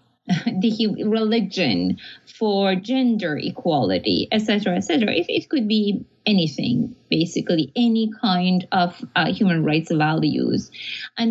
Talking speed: 115 wpm